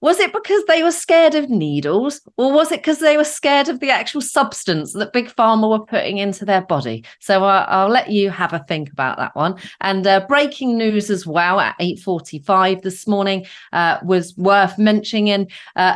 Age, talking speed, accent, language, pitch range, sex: 30-49, 200 wpm, British, English, 165-250 Hz, female